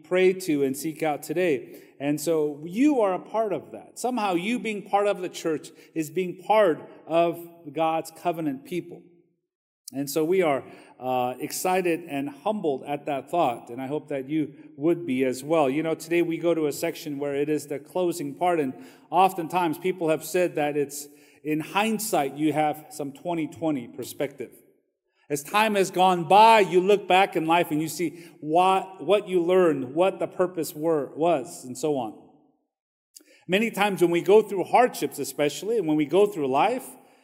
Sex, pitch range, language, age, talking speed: male, 150-190 Hz, English, 40-59, 185 wpm